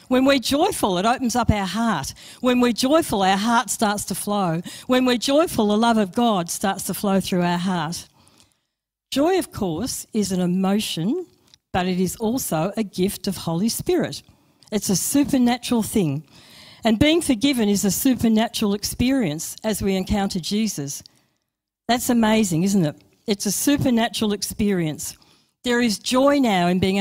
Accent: Australian